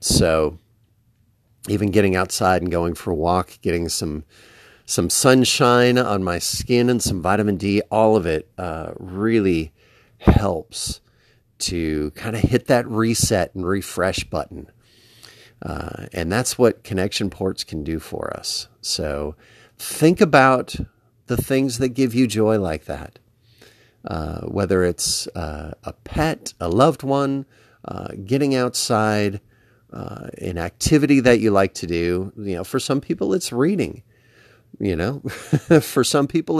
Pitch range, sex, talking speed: 95-125 Hz, male, 145 wpm